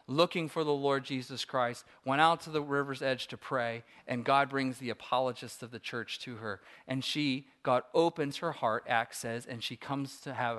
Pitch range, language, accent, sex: 135-165 Hz, English, American, male